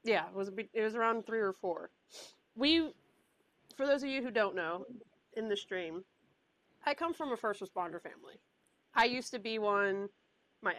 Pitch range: 190-265 Hz